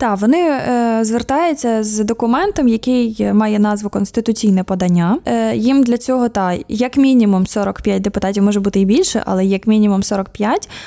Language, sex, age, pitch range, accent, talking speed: Ukrainian, female, 20-39, 210-250 Hz, native, 145 wpm